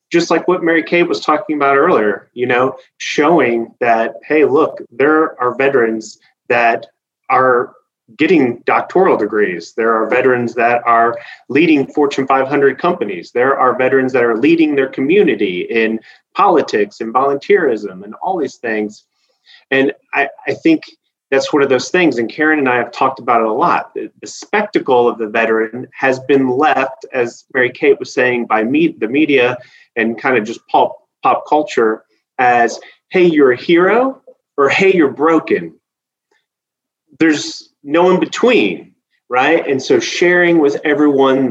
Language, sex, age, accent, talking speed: English, male, 30-49, American, 160 wpm